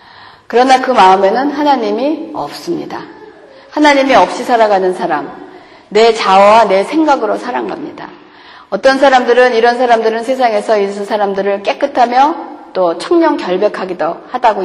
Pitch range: 190-295 Hz